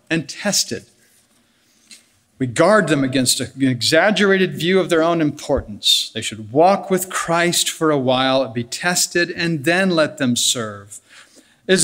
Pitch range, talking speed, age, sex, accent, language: 135-205 Hz, 145 wpm, 50-69, male, American, English